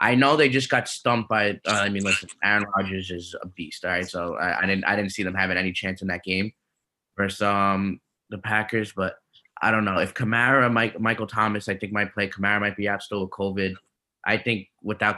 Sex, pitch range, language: male, 95-110 Hz, English